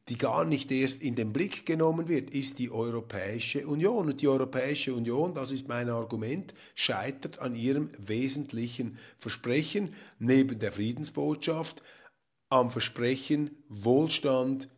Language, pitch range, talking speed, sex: German, 120-155 Hz, 130 wpm, male